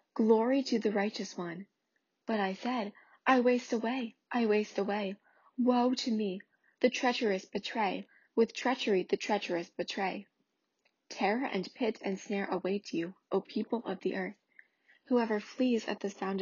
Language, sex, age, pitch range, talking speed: English, female, 10-29, 185-230 Hz, 155 wpm